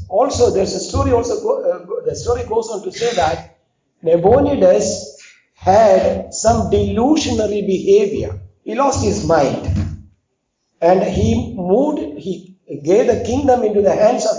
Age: 60-79